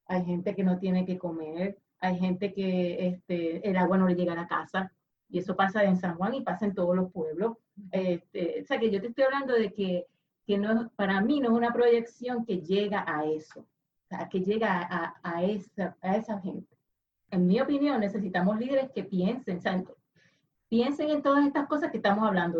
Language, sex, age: Spanish, female, 30-49